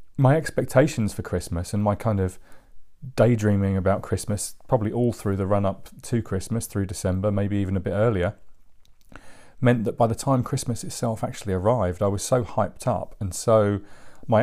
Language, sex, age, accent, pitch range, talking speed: English, male, 30-49, British, 100-120 Hz, 180 wpm